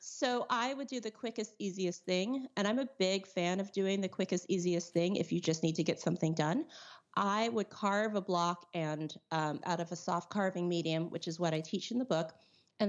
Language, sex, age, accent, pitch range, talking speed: English, female, 30-49, American, 160-200 Hz, 230 wpm